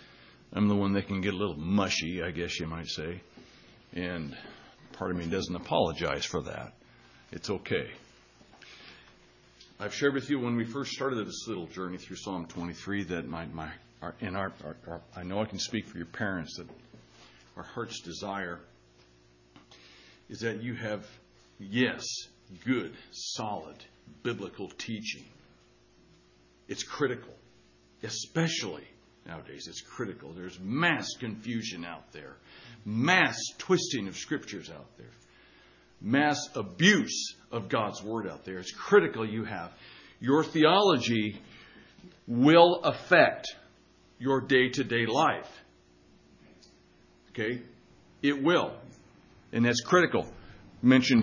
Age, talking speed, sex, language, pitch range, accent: 60-79, 130 wpm, male, English, 85-125 Hz, American